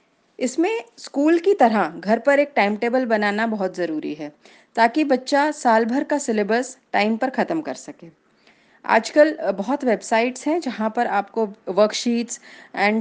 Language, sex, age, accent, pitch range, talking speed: Gujarati, female, 30-49, native, 210-295 Hz, 150 wpm